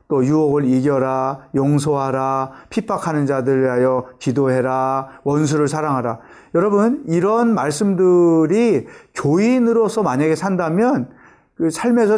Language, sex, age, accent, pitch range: Korean, male, 40-59, native, 130-195 Hz